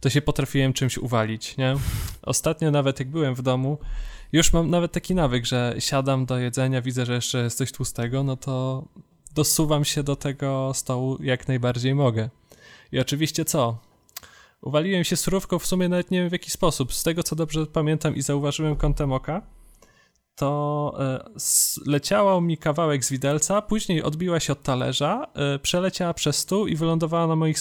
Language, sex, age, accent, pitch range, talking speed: Polish, male, 20-39, native, 130-160 Hz, 170 wpm